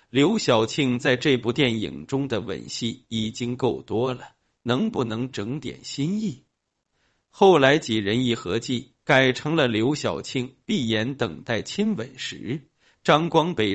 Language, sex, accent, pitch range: Chinese, male, native, 120-150 Hz